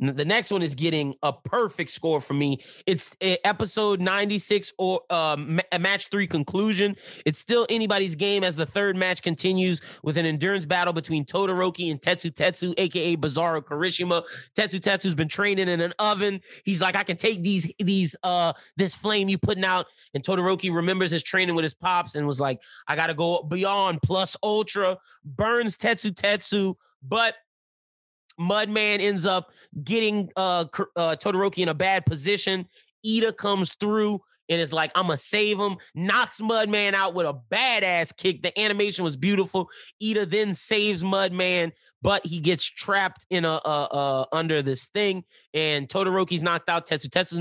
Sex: male